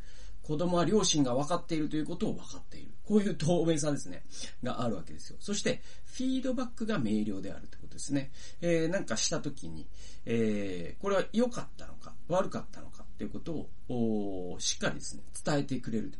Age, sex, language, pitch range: 40-59, male, Japanese, 105-175 Hz